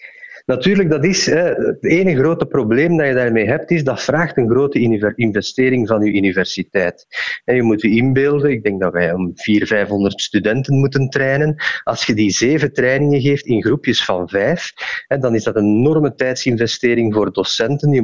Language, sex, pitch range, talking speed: Dutch, male, 115-145 Hz, 175 wpm